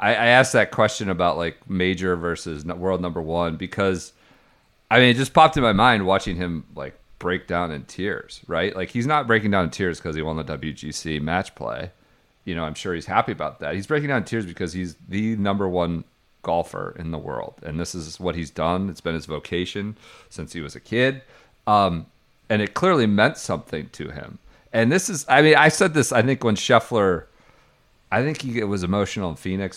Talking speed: 215 wpm